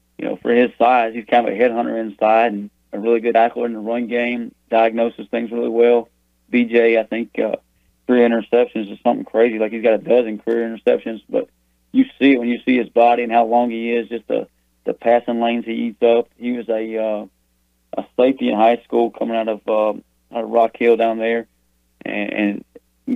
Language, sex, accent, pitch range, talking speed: English, male, American, 110-120 Hz, 215 wpm